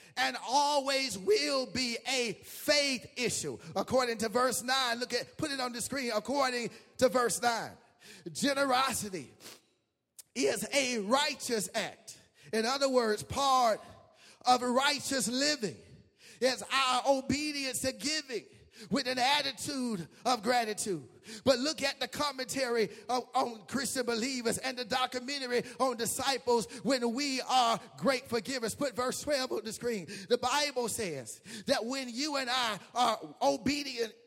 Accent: American